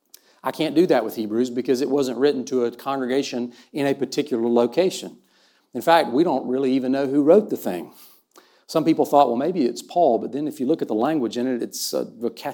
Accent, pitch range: American, 120-150 Hz